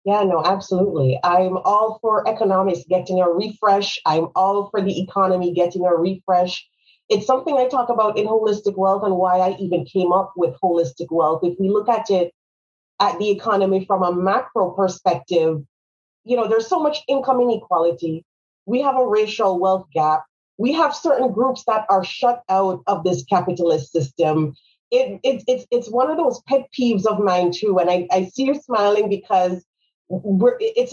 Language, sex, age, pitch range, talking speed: English, female, 30-49, 175-225 Hz, 180 wpm